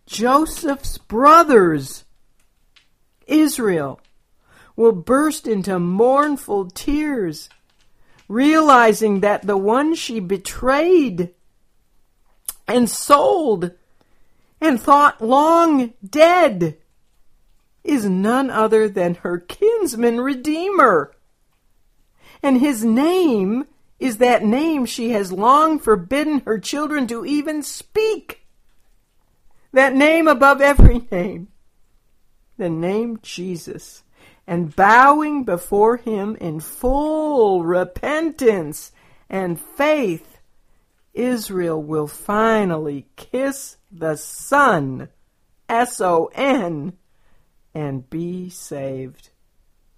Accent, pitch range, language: American, 175-280 Hz, English